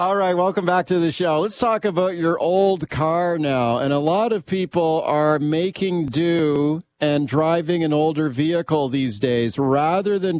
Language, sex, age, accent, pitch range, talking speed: English, male, 40-59, American, 140-170 Hz, 180 wpm